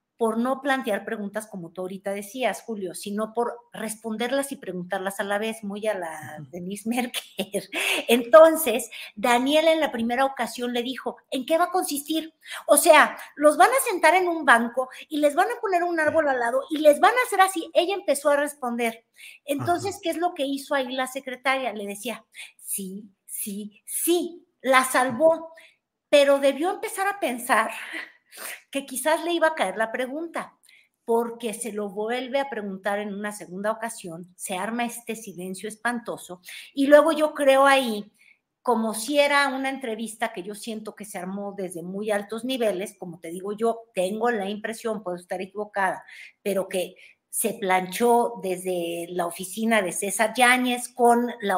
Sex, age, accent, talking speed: female, 40-59, Mexican, 175 wpm